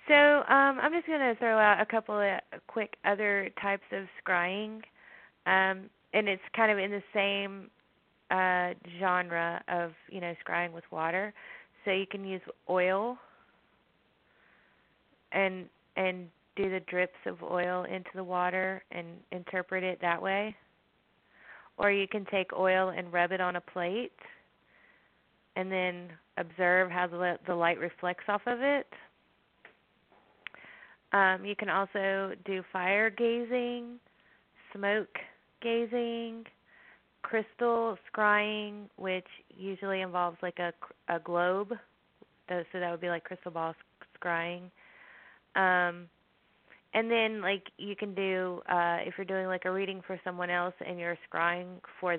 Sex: female